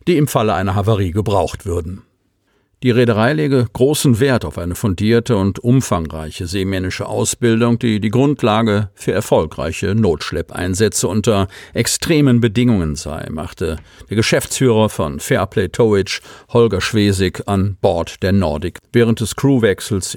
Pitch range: 95-120 Hz